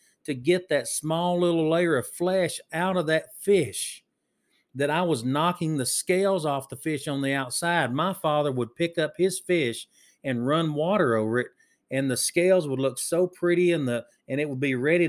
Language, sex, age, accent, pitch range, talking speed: English, male, 40-59, American, 130-175 Hz, 190 wpm